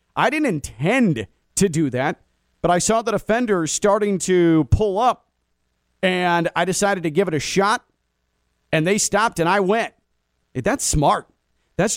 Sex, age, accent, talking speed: male, 40-59, American, 160 wpm